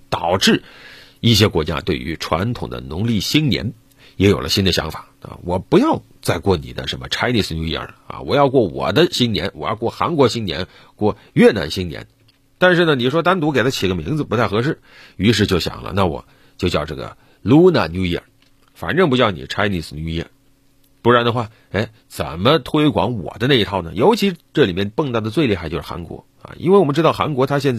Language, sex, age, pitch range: Chinese, male, 50-69, 100-145 Hz